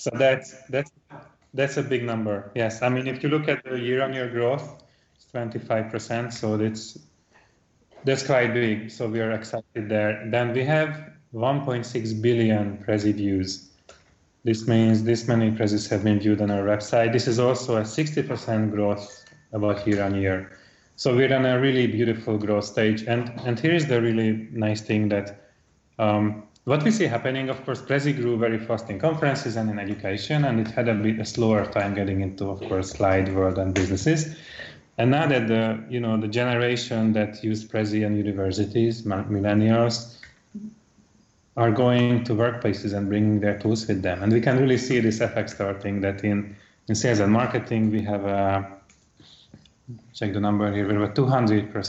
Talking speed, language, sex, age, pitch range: 175 wpm, Dutch, male, 30-49, 105-125 Hz